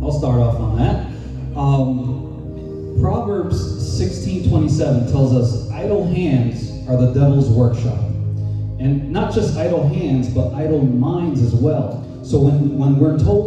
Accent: American